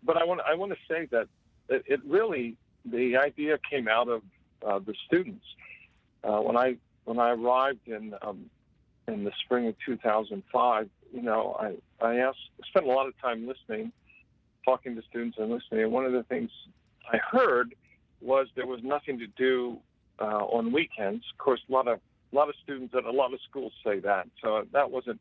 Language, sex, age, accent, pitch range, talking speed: English, male, 50-69, American, 115-135 Hz, 200 wpm